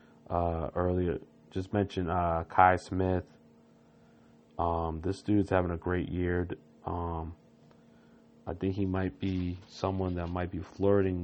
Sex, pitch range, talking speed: male, 85-95 Hz, 135 wpm